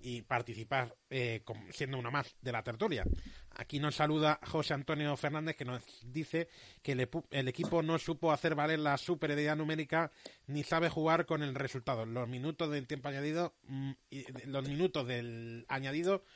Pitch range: 130-165 Hz